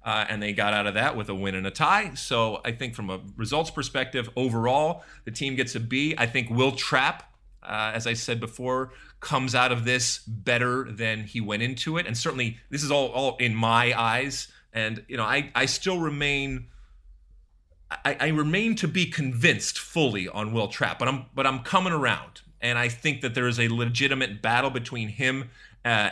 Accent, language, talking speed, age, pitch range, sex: American, English, 205 wpm, 30-49, 110-135 Hz, male